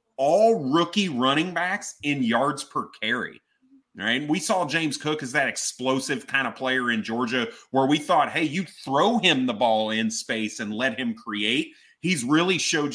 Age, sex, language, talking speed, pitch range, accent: 30-49, male, English, 180 wpm, 110-155 Hz, American